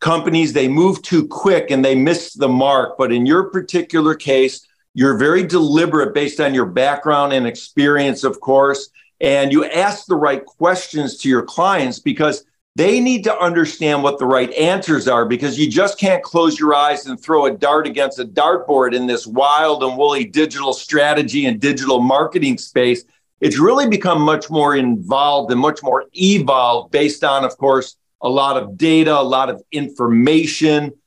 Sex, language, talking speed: male, English, 180 wpm